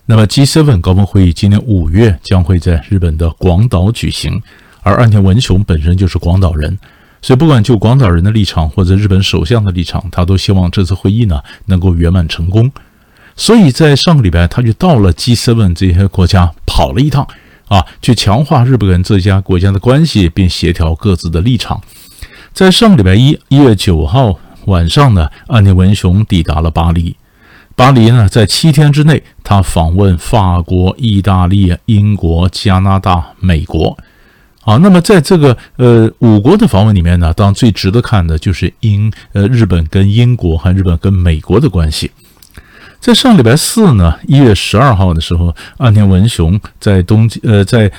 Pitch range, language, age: 90-115 Hz, Chinese, 50-69